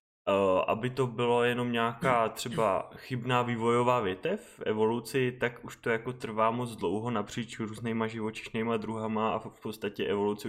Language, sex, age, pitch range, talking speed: Czech, male, 20-39, 115-125 Hz, 160 wpm